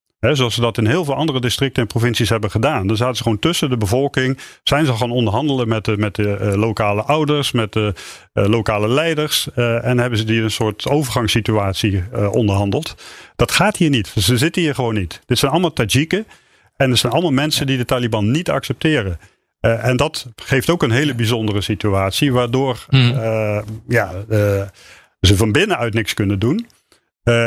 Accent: Dutch